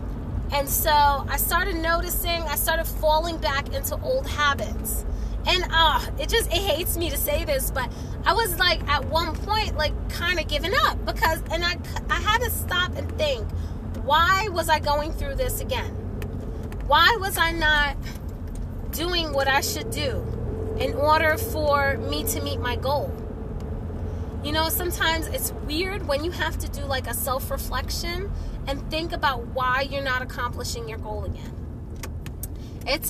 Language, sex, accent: English, female, American